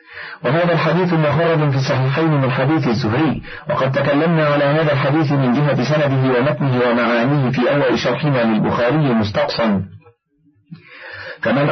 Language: Arabic